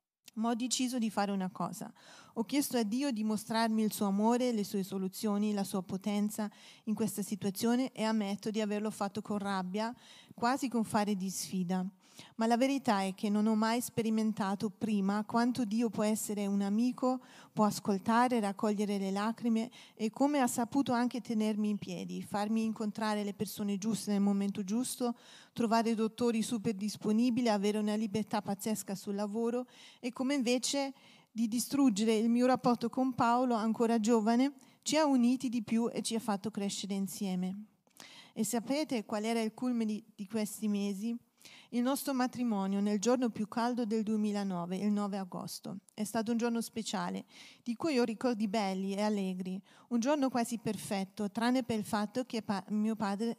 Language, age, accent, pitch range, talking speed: Italian, 40-59, native, 205-240 Hz, 170 wpm